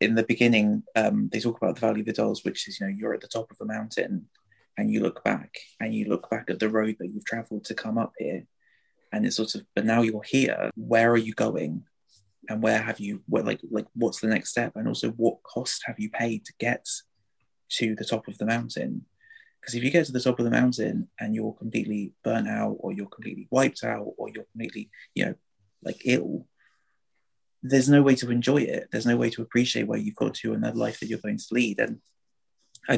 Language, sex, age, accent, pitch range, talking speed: English, male, 20-39, British, 110-130 Hz, 240 wpm